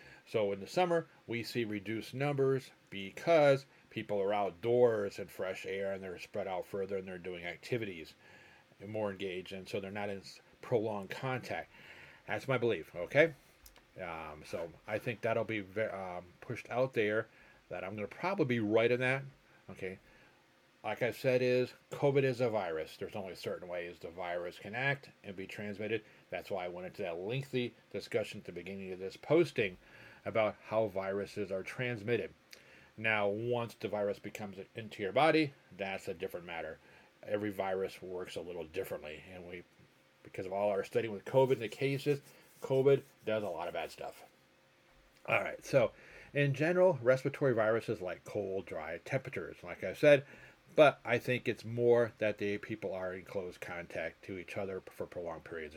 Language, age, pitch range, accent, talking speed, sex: English, 40-59, 95-130 Hz, American, 180 wpm, male